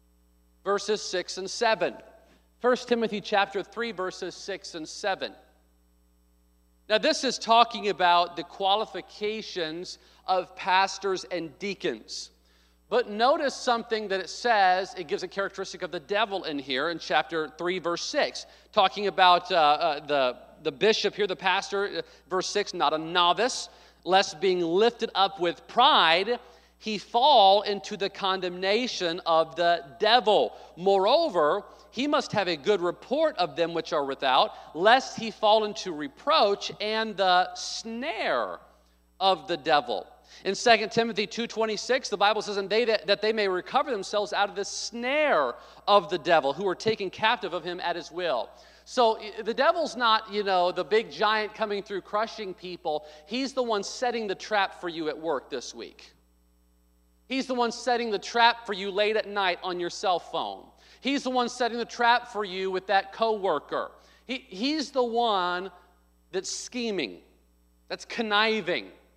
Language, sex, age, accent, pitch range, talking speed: English, male, 40-59, American, 175-220 Hz, 160 wpm